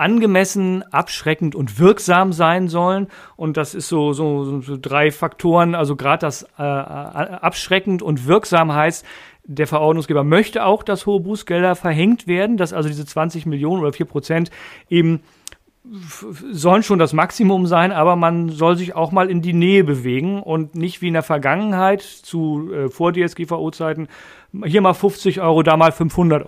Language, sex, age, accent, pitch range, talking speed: German, male, 40-59, German, 150-185 Hz, 155 wpm